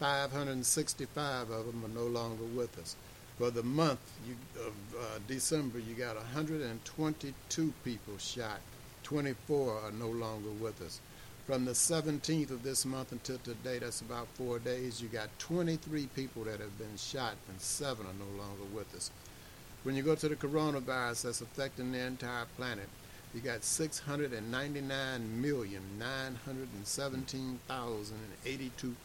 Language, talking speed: English, 135 wpm